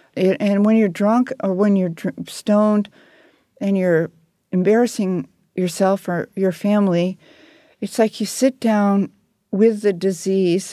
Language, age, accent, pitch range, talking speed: English, 50-69, American, 180-215 Hz, 130 wpm